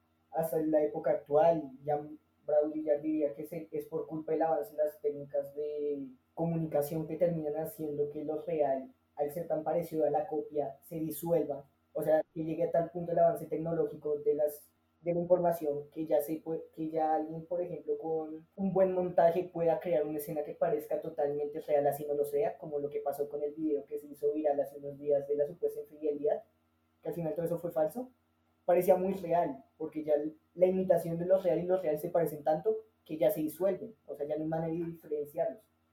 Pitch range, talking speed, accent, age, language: 145-175 Hz, 215 wpm, Colombian, 20-39, Spanish